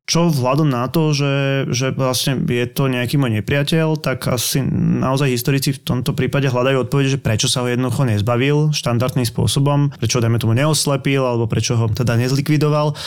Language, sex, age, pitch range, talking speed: Slovak, male, 20-39, 120-140 Hz, 175 wpm